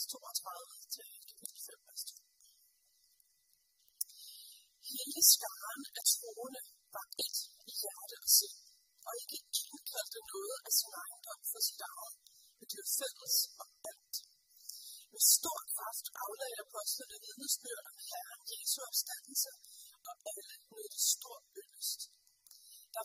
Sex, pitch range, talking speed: female, 275-440 Hz, 105 wpm